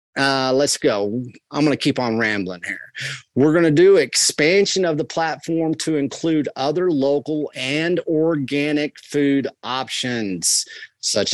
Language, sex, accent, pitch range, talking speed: English, male, American, 115-155 Hz, 145 wpm